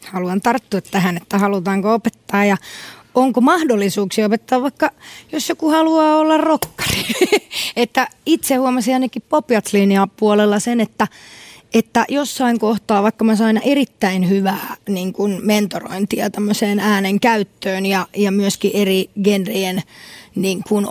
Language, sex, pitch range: Finnish, female, 195-230 Hz